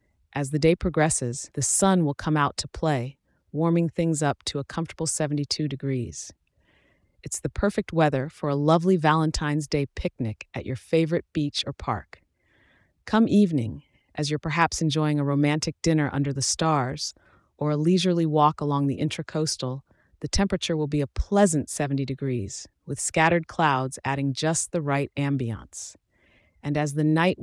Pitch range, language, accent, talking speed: 135-160 Hz, English, American, 160 wpm